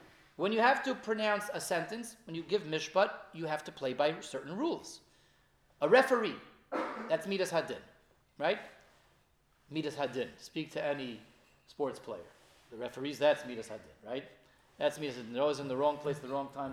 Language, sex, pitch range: English, male, 145-210 Hz